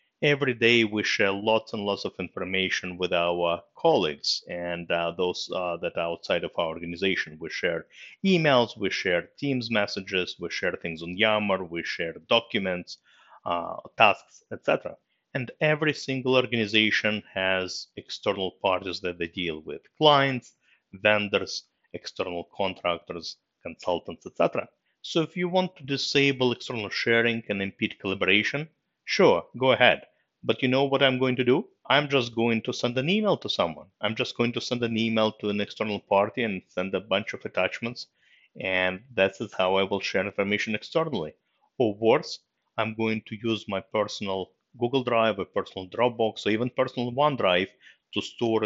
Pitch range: 95-125 Hz